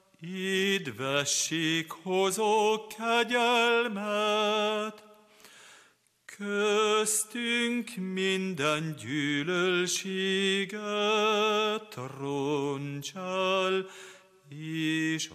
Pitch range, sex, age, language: 145-210 Hz, male, 40-59, Hungarian